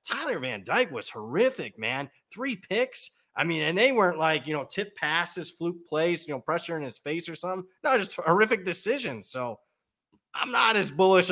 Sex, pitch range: male, 120-170 Hz